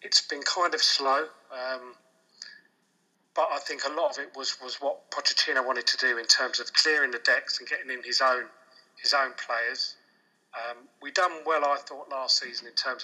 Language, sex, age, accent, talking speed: English, male, 40-59, British, 200 wpm